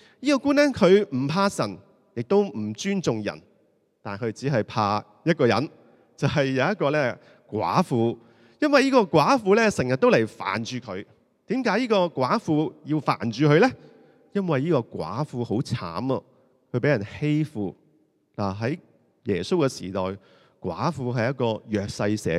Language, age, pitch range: Chinese, 30-49, 105-160 Hz